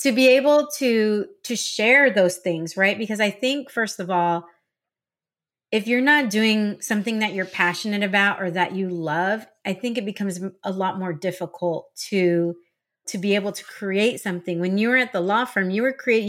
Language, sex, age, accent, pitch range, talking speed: English, female, 30-49, American, 180-215 Hz, 195 wpm